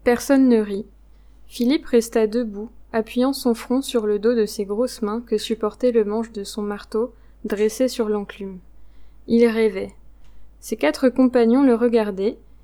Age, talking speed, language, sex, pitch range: 20-39, 155 wpm, French, female, 215-250 Hz